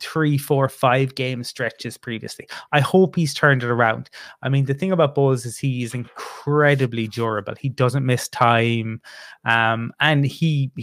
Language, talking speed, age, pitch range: English, 165 wpm, 20-39, 120-140 Hz